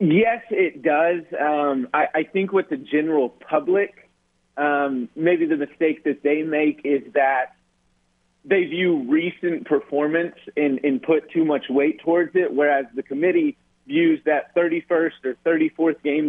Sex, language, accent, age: male, English, American, 30-49